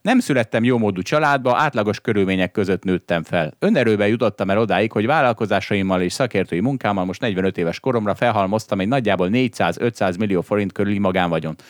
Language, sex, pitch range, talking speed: Hungarian, male, 95-125 Hz, 160 wpm